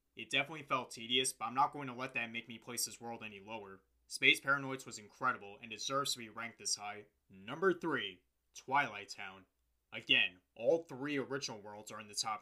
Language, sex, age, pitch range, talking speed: English, male, 20-39, 100-135 Hz, 205 wpm